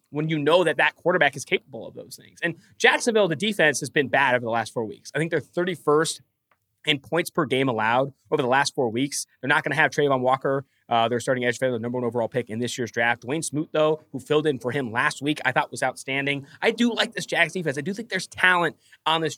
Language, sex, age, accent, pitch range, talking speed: English, male, 20-39, American, 130-170 Hz, 265 wpm